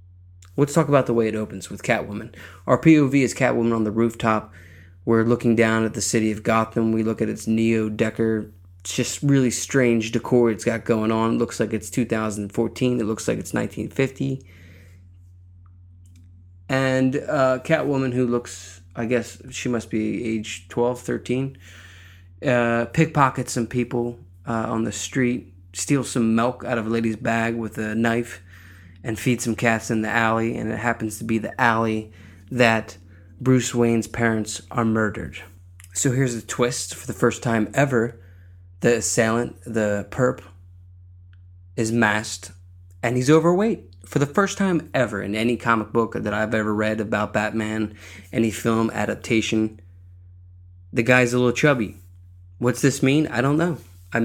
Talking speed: 165 wpm